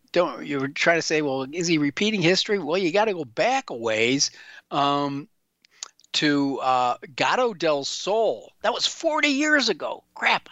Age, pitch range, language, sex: 50-69, 130-175 Hz, English, male